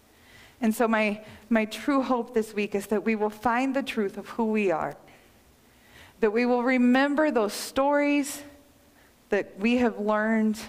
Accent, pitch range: American, 195-235 Hz